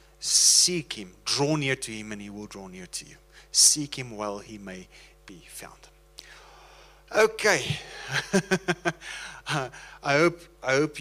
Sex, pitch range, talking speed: male, 115-145 Hz, 135 wpm